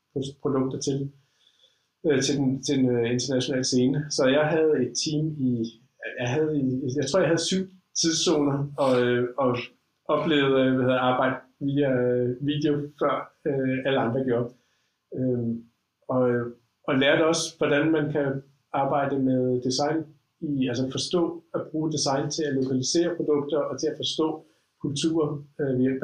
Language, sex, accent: Danish, male, native